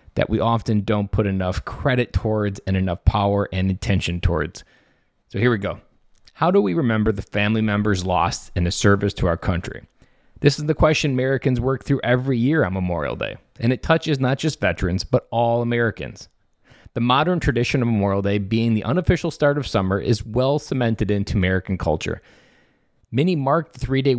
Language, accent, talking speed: English, American, 185 wpm